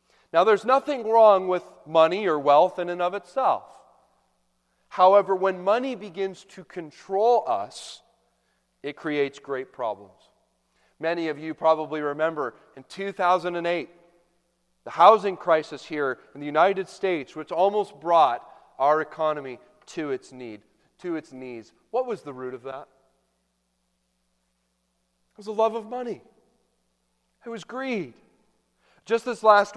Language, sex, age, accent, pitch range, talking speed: English, male, 40-59, American, 150-230 Hz, 130 wpm